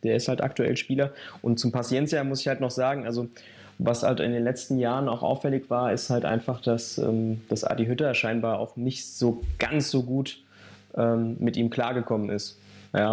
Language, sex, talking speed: German, male, 200 wpm